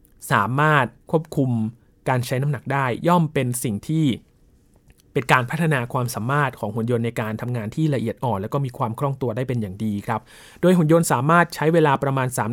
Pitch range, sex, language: 120-150 Hz, male, Thai